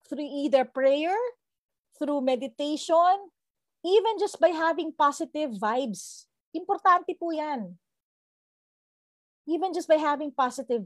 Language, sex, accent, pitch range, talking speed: English, female, Filipino, 220-275 Hz, 105 wpm